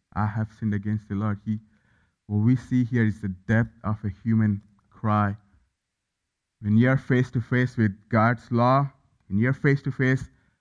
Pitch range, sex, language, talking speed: 105-130 Hz, male, English, 180 wpm